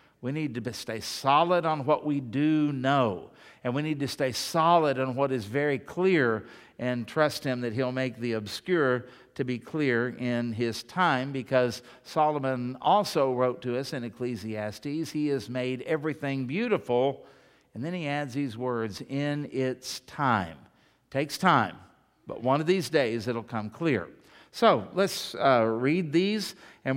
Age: 50-69